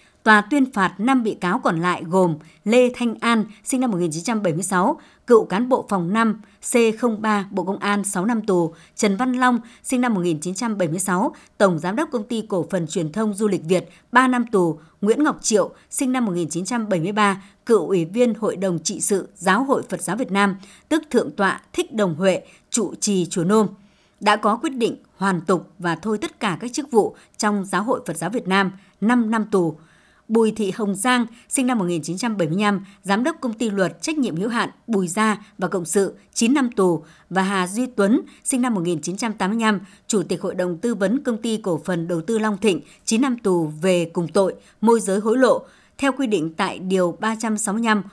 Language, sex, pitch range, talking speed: Vietnamese, male, 185-235 Hz, 200 wpm